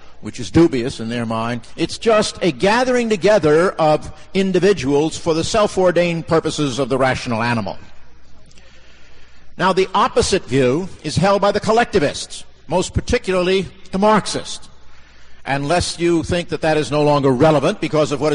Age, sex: 50-69, male